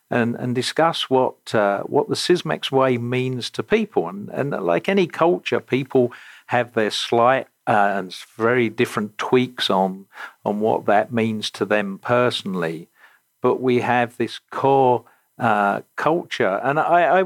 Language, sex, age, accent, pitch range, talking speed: English, male, 50-69, British, 105-130 Hz, 155 wpm